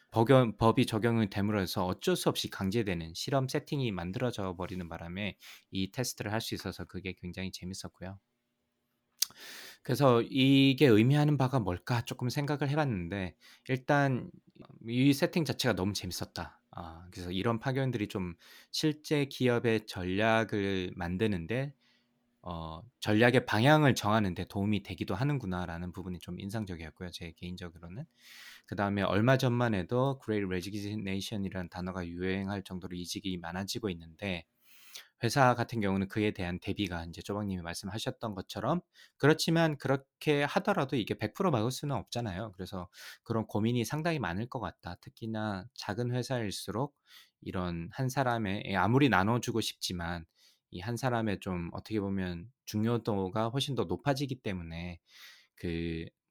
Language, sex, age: Korean, male, 20-39